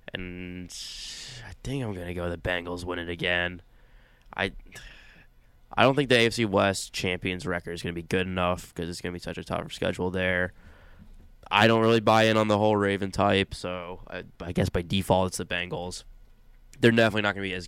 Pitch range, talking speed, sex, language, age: 90-105 Hz, 215 wpm, male, English, 20-39